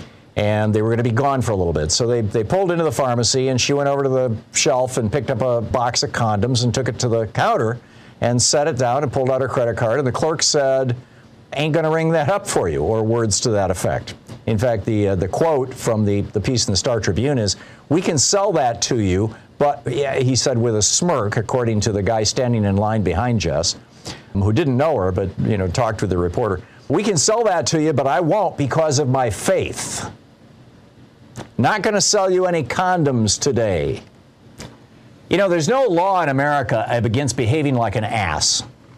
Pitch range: 110-140 Hz